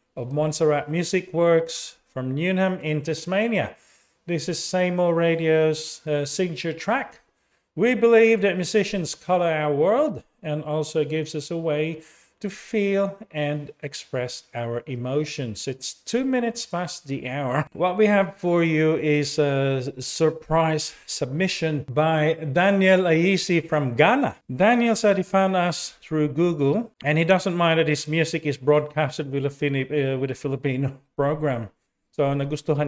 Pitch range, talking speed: 145-180 Hz, 135 wpm